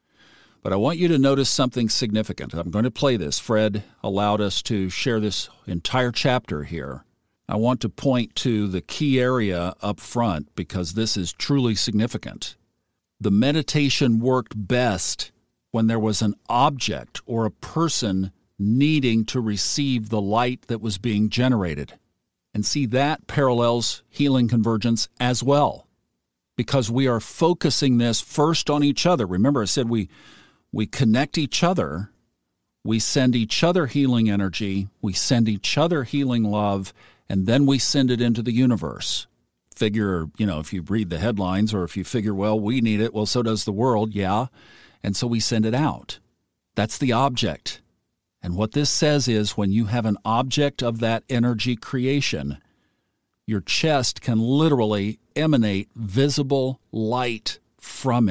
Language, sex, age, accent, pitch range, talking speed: English, male, 50-69, American, 105-130 Hz, 160 wpm